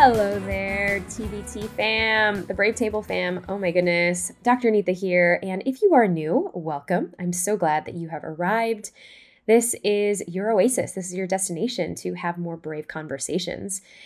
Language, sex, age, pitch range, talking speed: English, female, 10-29, 160-205 Hz, 170 wpm